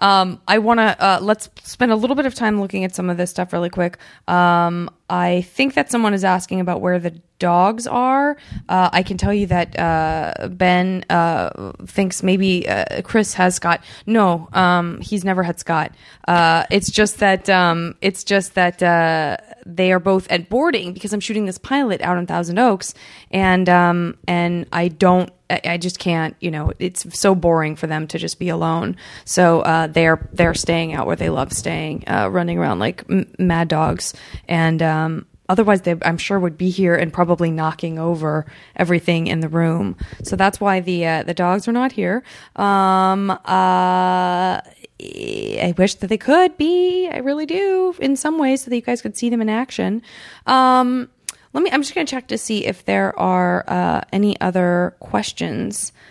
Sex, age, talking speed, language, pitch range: female, 20-39, 195 wpm, English, 170-210 Hz